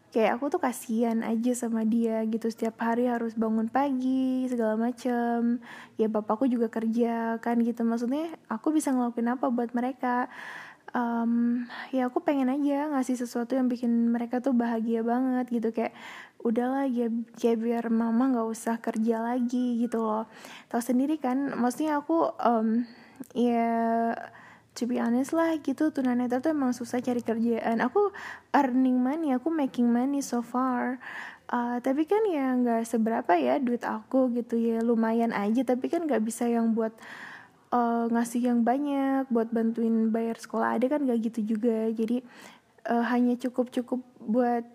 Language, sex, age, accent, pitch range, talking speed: English, female, 20-39, Indonesian, 230-255 Hz, 160 wpm